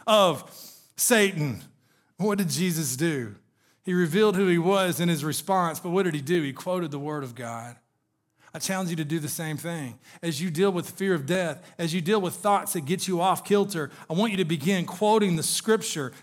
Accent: American